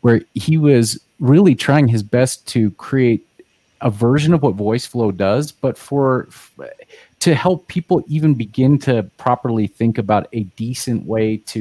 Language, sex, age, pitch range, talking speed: English, male, 30-49, 110-145 Hz, 165 wpm